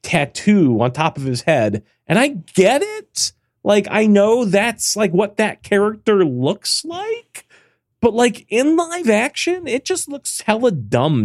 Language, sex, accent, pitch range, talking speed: English, male, American, 135-220 Hz, 160 wpm